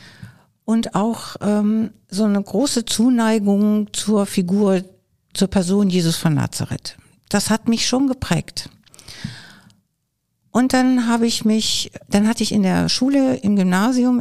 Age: 60-79